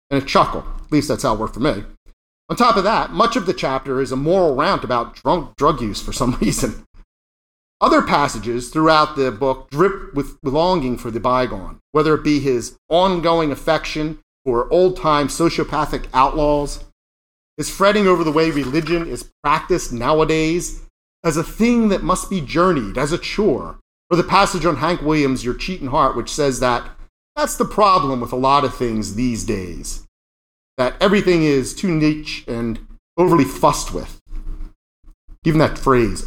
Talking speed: 170 wpm